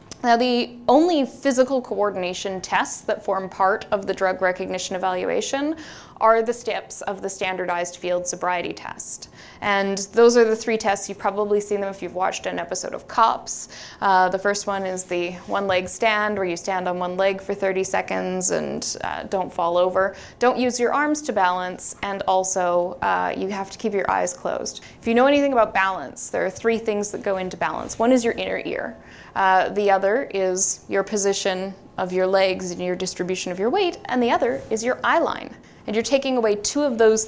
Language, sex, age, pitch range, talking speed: English, female, 20-39, 185-225 Hz, 205 wpm